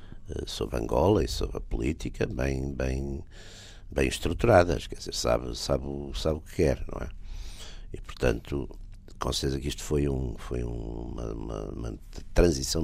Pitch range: 70-95 Hz